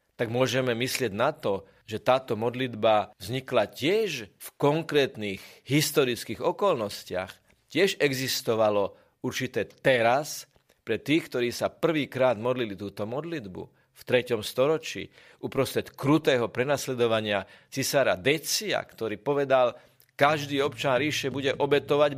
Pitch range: 105-140 Hz